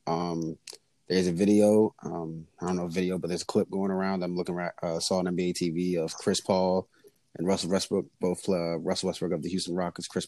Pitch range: 85-95 Hz